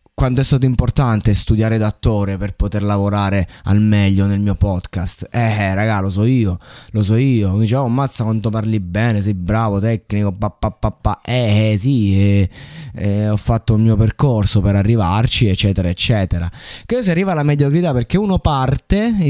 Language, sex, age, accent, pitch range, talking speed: Italian, male, 20-39, native, 110-155 Hz, 185 wpm